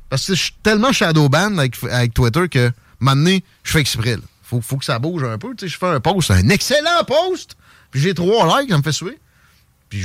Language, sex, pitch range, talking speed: French, male, 120-185 Hz, 240 wpm